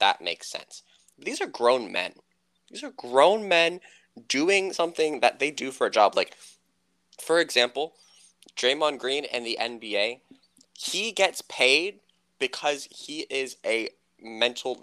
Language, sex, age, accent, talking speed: English, male, 20-39, American, 140 wpm